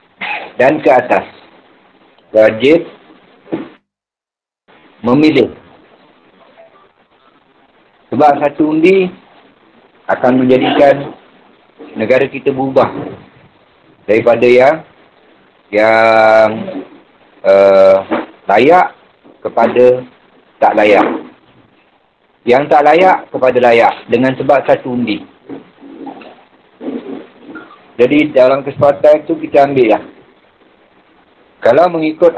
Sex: male